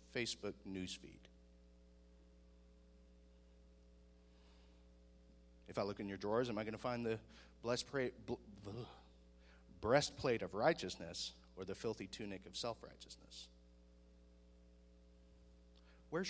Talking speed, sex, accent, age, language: 90 wpm, male, American, 40-59, English